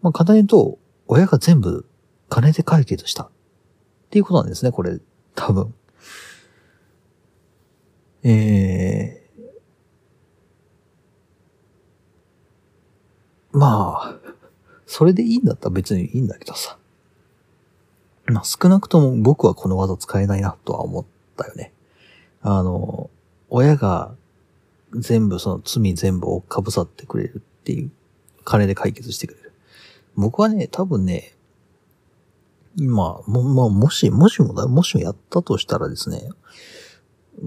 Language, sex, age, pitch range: Japanese, male, 40-59, 95-135 Hz